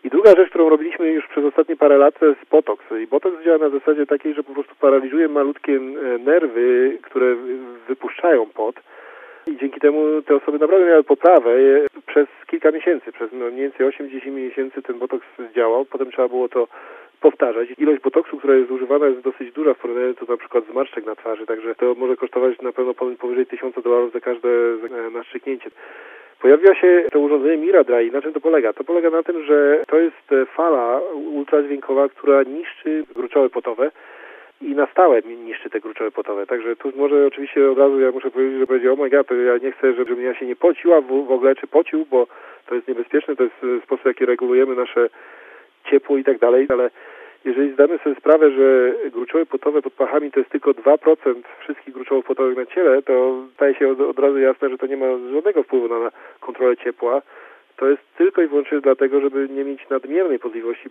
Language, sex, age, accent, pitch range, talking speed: Polish, male, 40-59, native, 130-175 Hz, 190 wpm